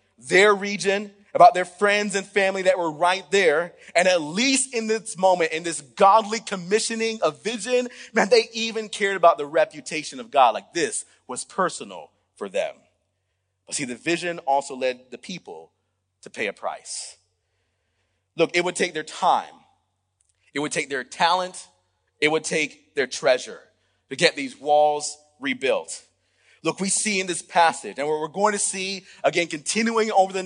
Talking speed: 170 wpm